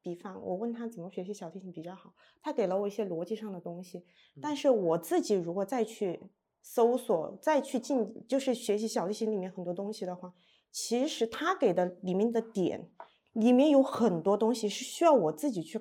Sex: female